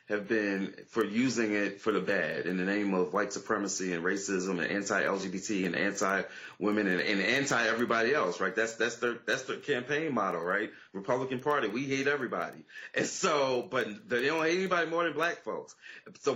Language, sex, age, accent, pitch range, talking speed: English, male, 30-49, American, 120-180 Hz, 180 wpm